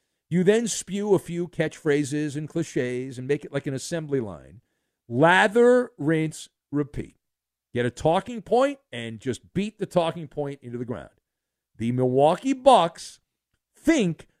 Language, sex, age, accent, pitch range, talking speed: English, male, 50-69, American, 145-215 Hz, 145 wpm